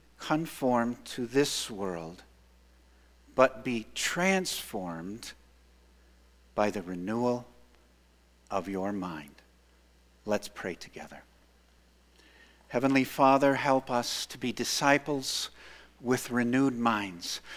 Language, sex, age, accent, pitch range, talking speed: English, male, 50-69, American, 95-135 Hz, 90 wpm